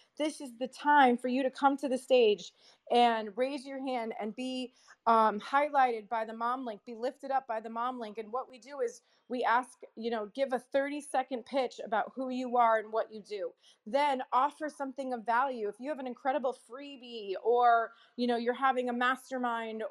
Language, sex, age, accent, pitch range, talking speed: English, female, 30-49, American, 225-270 Hz, 210 wpm